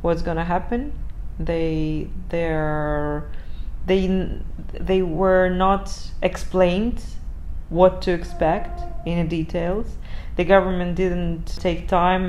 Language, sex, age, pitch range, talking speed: English, female, 30-49, 160-185 Hz, 105 wpm